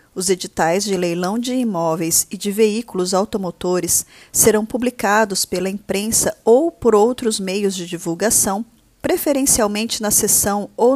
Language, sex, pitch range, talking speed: Portuguese, female, 185-235 Hz, 130 wpm